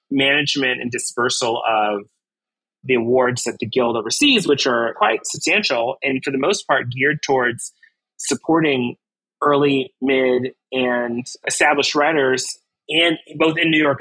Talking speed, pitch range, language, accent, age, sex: 135 wpm, 125-150 Hz, English, American, 30-49, male